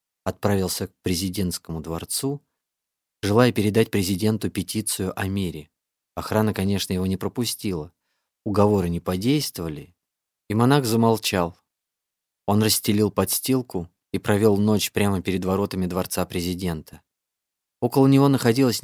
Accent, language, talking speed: native, Russian, 110 wpm